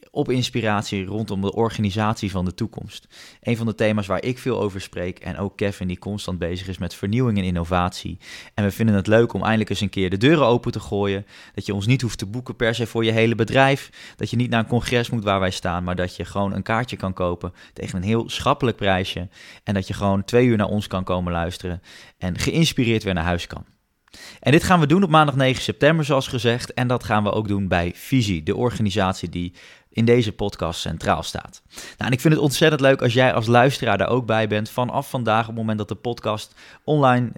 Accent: Dutch